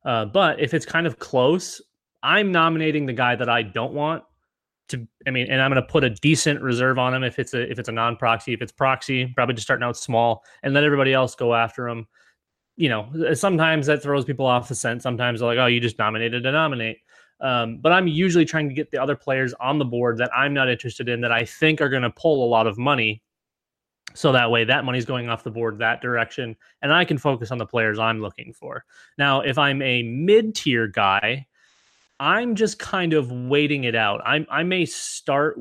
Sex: male